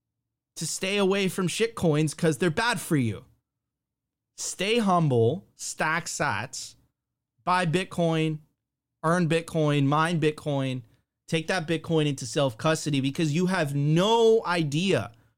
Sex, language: male, English